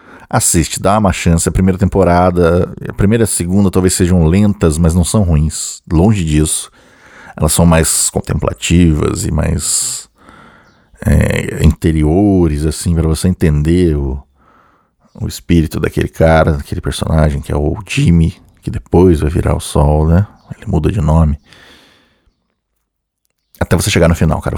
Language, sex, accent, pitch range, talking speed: Portuguese, male, Brazilian, 80-95 Hz, 145 wpm